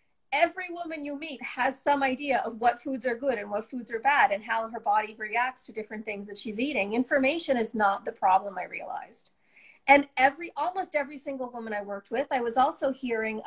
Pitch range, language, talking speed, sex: 215-275 Hz, English, 215 wpm, female